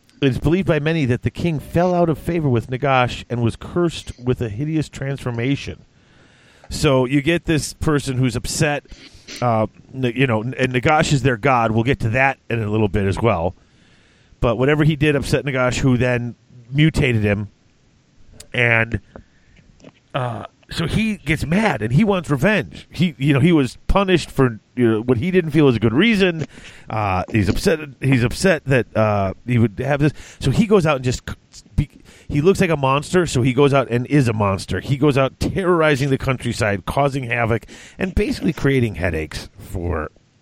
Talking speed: 185 wpm